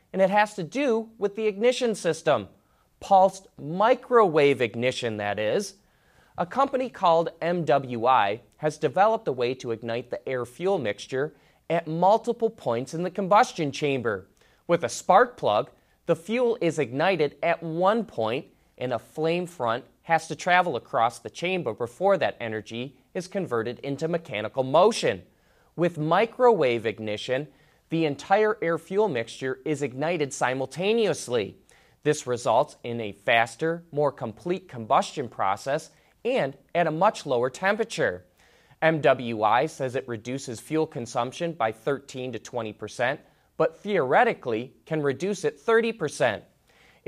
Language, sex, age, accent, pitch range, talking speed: English, male, 20-39, American, 125-185 Hz, 135 wpm